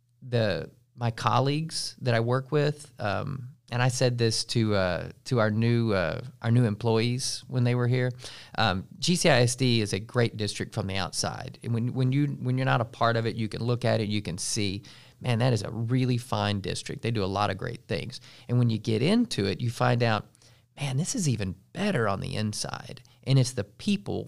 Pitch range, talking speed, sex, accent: 110-130 Hz, 215 wpm, male, American